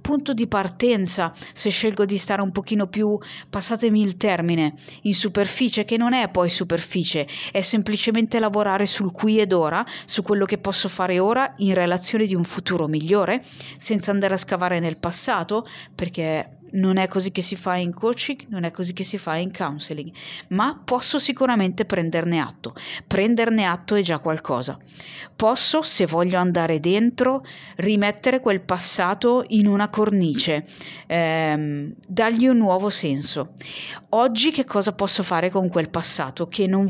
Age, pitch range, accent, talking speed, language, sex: 40-59, 170-220 Hz, native, 160 wpm, Italian, female